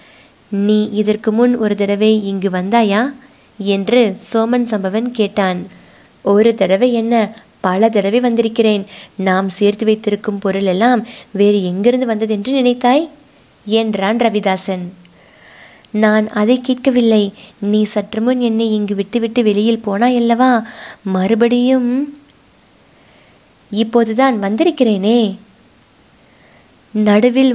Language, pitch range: Tamil, 210-245 Hz